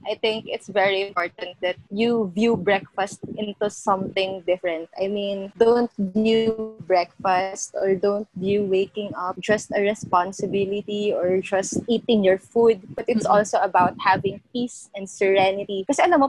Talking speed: 150 wpm